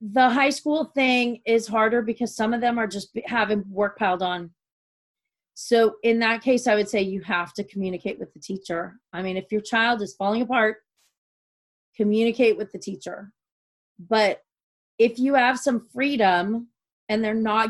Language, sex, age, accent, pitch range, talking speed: English, female, 30-49, American, 195-230 Hz, 175 wpm